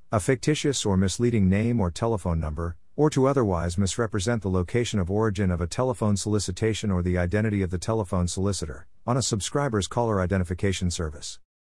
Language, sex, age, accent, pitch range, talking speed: English, male, 50-69, American, 90-110 Hz, 170 wpm